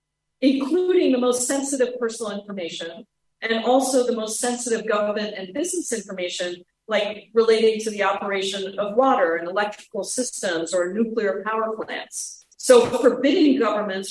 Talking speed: 135 wpm